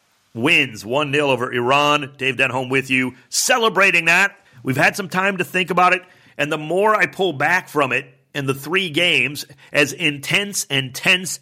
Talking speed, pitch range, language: 185 wpm, 130-165 Hz, English